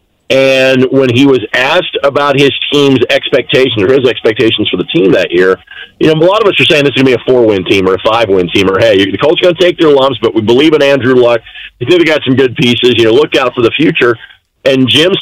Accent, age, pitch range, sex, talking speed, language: American, 40-59, 130-175 Hz, male, 280 wpm, English